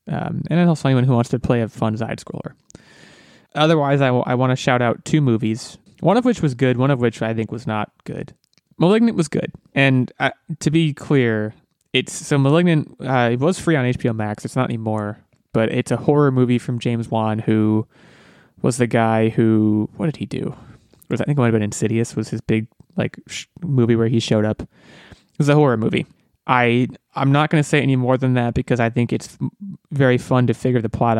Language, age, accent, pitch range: English, 20-39, American, 115-150 Hz